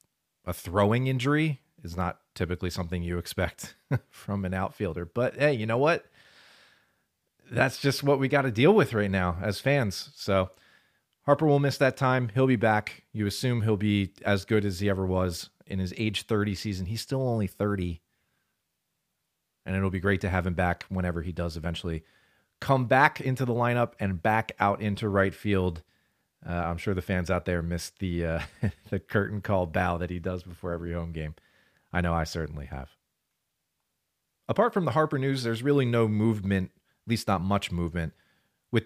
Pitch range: 90-115 Hz